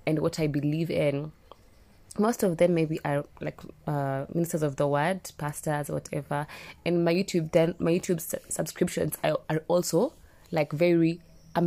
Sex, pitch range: female, 150-180 Hz